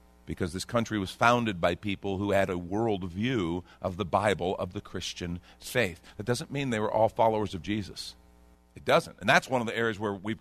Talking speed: 220 wpm